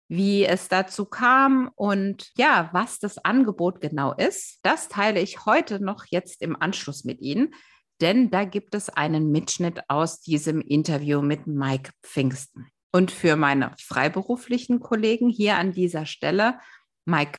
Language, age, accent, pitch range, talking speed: German, 50-69, German, 145-205 Hz, 150 wpm